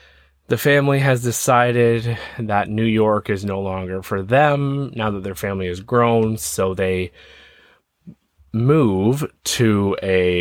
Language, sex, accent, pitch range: English, male, American, 90-115 Hz